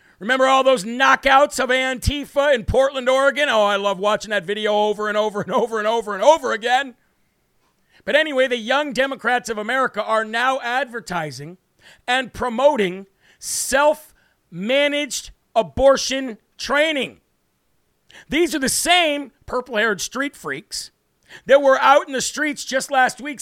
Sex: male